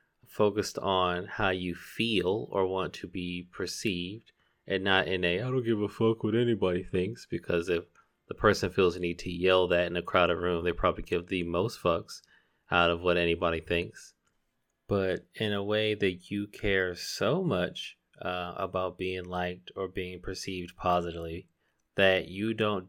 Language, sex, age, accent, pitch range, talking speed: English, male, 20-39, American, 85-100 Hz, 175 wpm